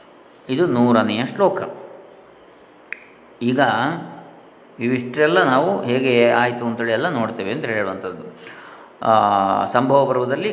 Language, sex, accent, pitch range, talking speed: Kannada, male, native, 115-150 Hz, 85 wpm